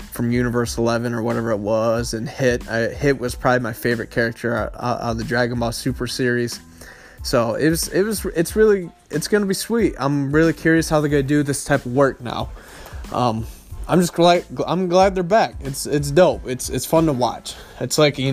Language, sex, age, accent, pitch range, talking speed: English, male, 20-39, American, 120-155 Hz, 220 wpm